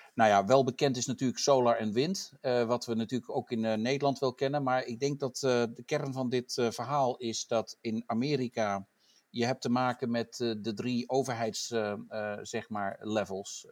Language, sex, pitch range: English, male, 110-130 Hz